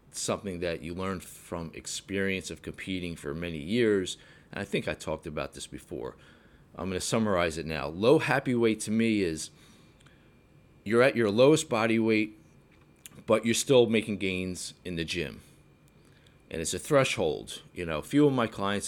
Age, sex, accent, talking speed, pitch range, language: 30-49, male, American, 180 wpm, 85-110 Hz, English